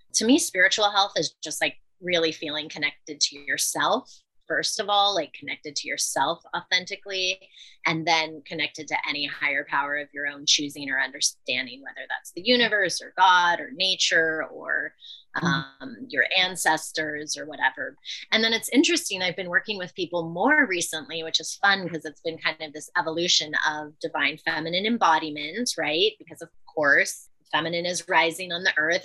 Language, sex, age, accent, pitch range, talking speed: English, female, 20-39, American, 150-185 Hz, 170 wpm